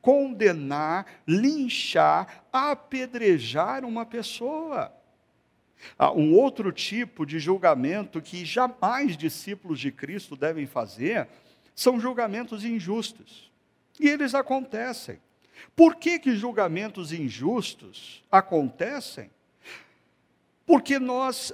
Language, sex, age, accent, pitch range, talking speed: Portuguese, male, 60-79, Brazilian, 185-255 Hz, 90 wpm